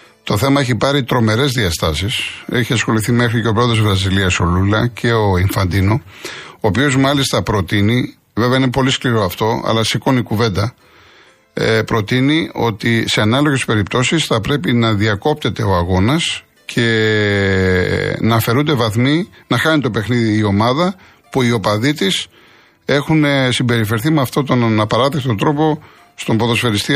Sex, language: male, Greek